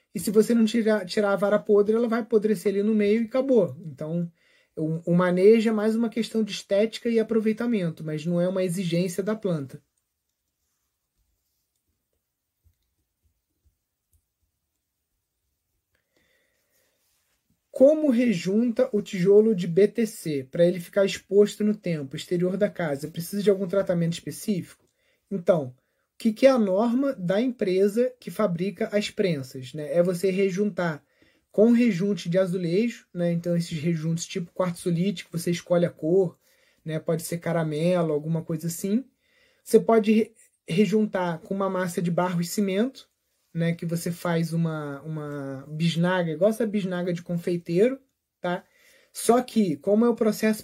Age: 30-49